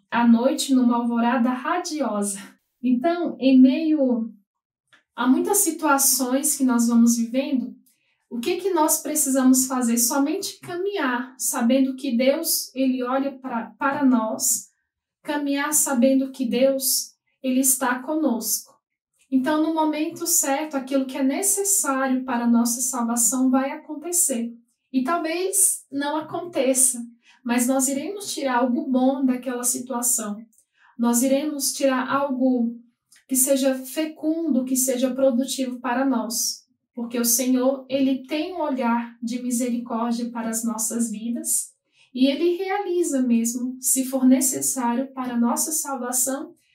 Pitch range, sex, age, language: 240-285 Hz, female, 10-29, Portuguese